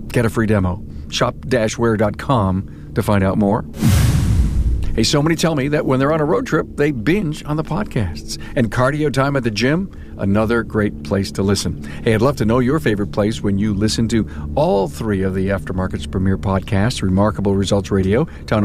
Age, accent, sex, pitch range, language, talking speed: 50-69, American, male, 95-120 Hz, English, 195 wpm